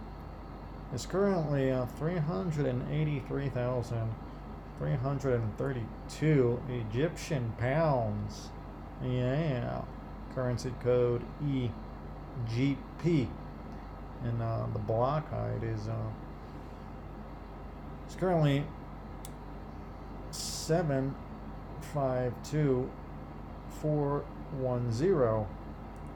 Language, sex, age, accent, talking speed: English, male, 40-59, American, 80 wpm